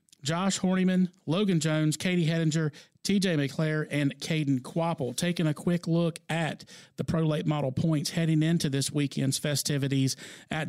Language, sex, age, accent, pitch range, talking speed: English, male, 40-59, American, 140-170 Hz, 150 wpm